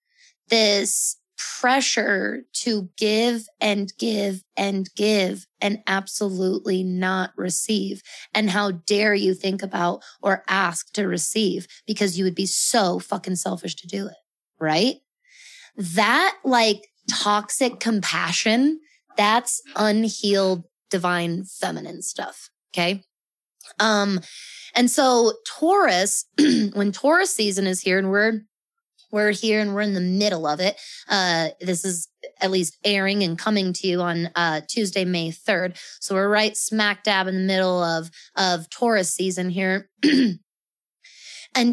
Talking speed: 130 wpm